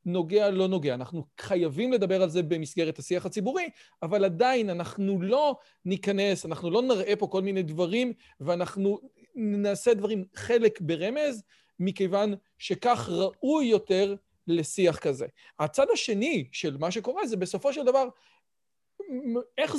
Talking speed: 135 wpm